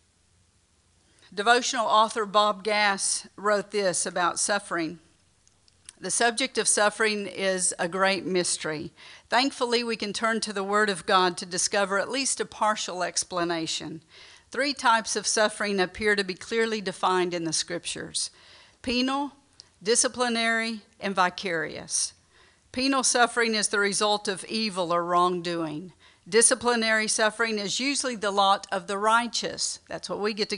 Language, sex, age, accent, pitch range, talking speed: English, female, 50-69, American, 180-225 Hz, 140 wpm